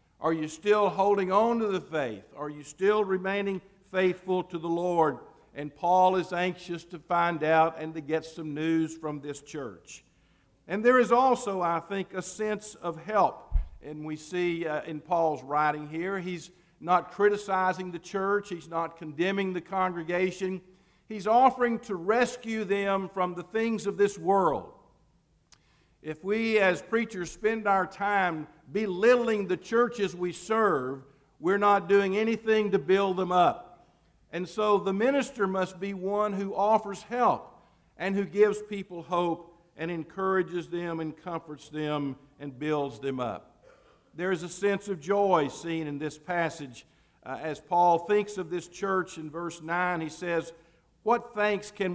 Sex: male